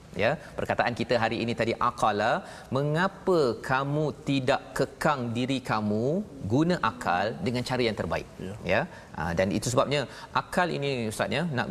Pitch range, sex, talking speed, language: 115-140 Hz, male, 145 wpm, Malayalam